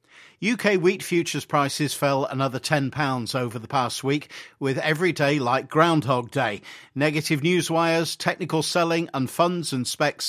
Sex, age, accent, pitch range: male, 50-69, British, 130-165 Hz